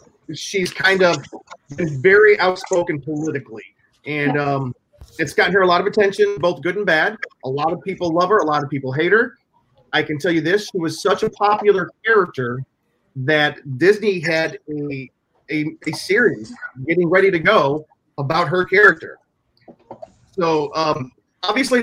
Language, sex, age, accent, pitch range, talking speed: English, male, 30-49, American, 145-195 Hz, 165 wpm